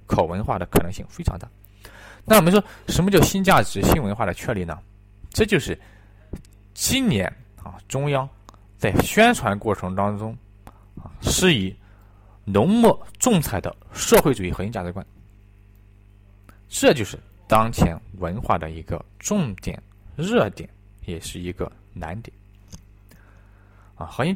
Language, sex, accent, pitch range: Chinese, male, native, 95-110 Hz